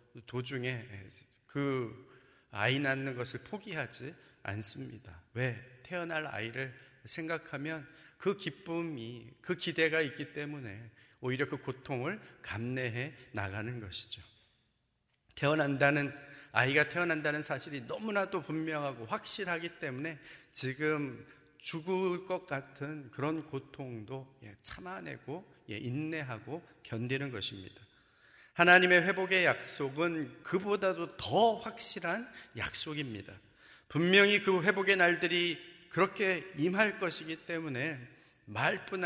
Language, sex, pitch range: Korean, male, 130-175 Hz